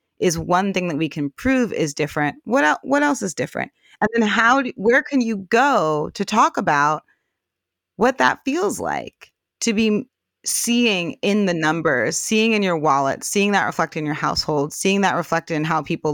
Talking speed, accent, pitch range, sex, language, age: 195 wpm, American, 150-195 Hz, female, English, 30-49